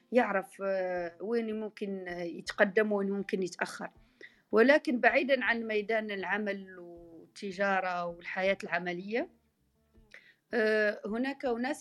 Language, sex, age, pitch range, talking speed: Arabic, female, 40-59, 195-245 Hz, 85 wpm